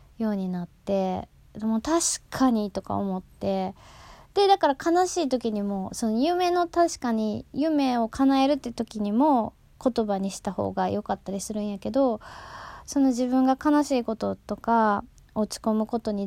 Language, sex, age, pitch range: Japanese, female, 20-39, 200-250 Hz